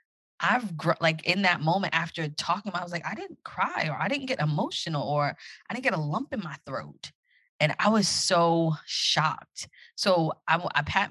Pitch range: 145-195 Hz